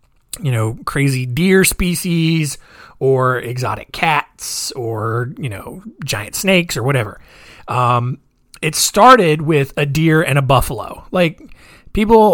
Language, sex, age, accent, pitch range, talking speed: English, male, 30-49, American, 125-165 Hz, 125 wpm